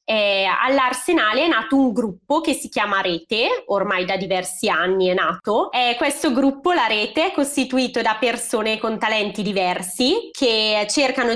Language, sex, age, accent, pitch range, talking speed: Italian, female, 20-39, native, 195-265 Hz, 155 wpm